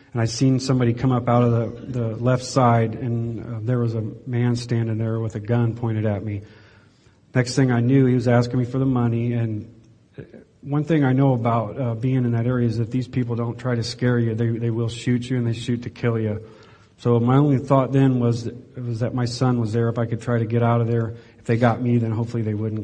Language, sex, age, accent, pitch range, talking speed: English, male, 40-59, American, 115-125 Hz, 255 wpm